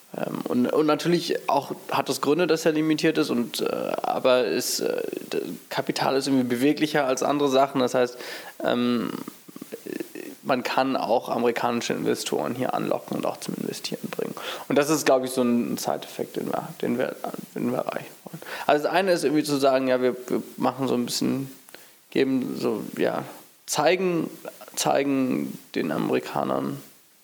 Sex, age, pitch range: male, 20-39, 125-145 Hz